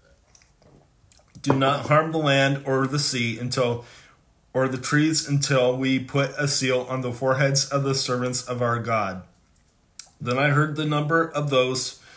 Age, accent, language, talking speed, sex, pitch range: 30-49, American, English, 165 wpm, male, 120-140 Hz